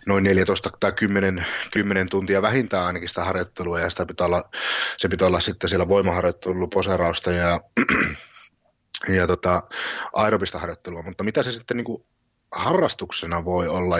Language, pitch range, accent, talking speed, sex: Finnish, 90-110 Hz, native, 150 wpm, male